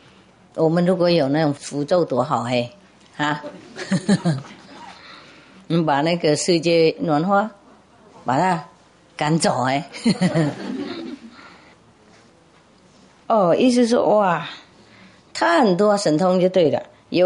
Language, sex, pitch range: English, female, 145-190 Hz